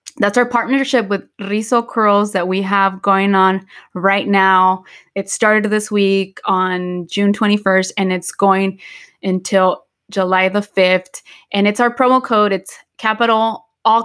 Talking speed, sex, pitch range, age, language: 150 wpm, female, 190-220 Hz, 20-39, English